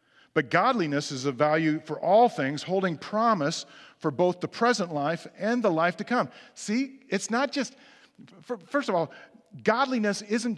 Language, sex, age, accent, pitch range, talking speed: English, male, 40-59, American, 175-235 Hz, 165 wpm